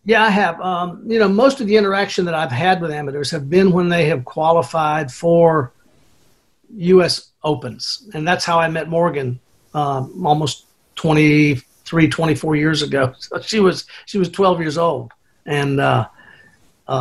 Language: English